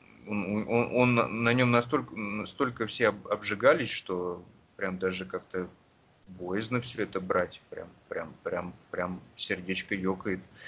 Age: 30-49